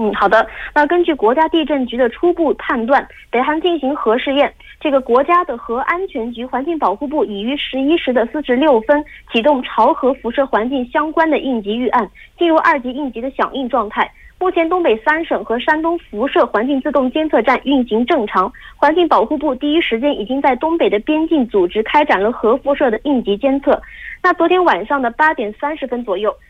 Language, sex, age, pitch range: Korean, female, 20-39, 240-320 Hz